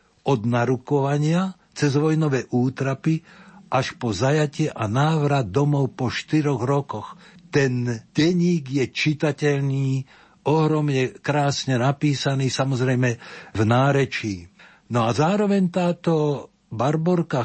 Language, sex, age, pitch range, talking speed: Slovak, male, 60-79, 120-150 Hz, 100 wpm